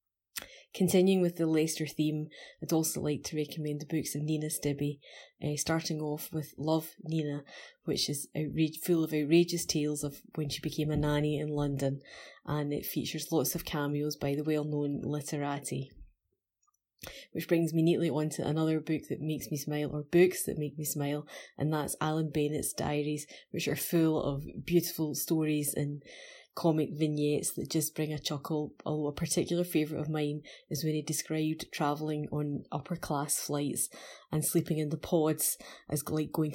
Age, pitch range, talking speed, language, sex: 20-39, 145-160 Hz, 175 wpm, English, female